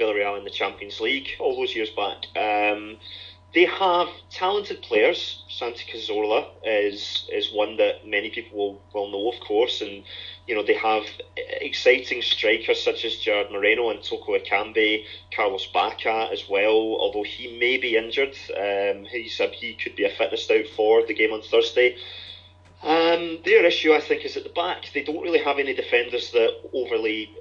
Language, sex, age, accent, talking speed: English, male, 30-49, British, 175 wpm